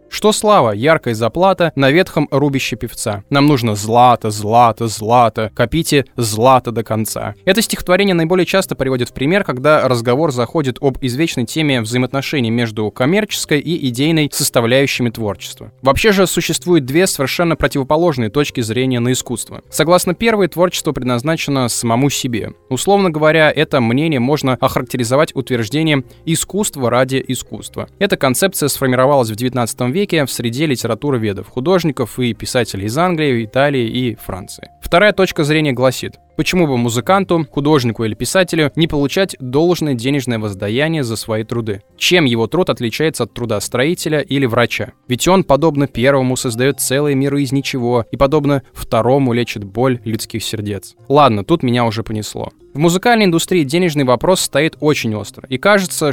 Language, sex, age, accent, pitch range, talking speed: Russian, male, 20-39, native, 120-155 Hz, 150 wpm